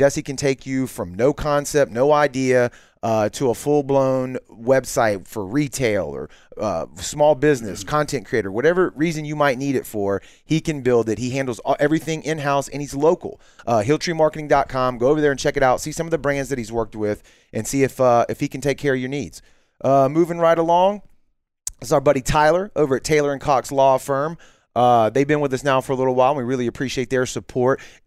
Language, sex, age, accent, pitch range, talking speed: English, male, 30-49, American, 120-145 Hz, 215 wpm